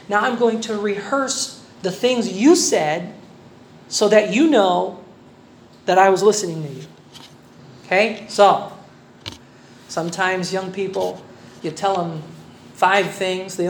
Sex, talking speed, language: male, 130 wpm, Filipino